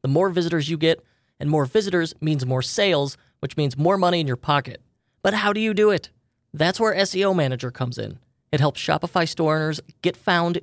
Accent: American